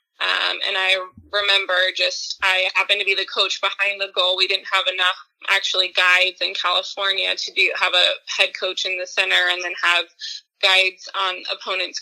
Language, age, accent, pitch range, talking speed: English, 20-39, American, 185-205 Hz, 185 wpm